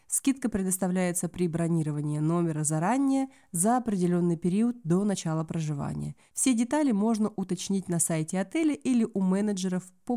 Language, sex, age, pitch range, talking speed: Russian, female, 30-49, 170-220 Hz, 135 wpm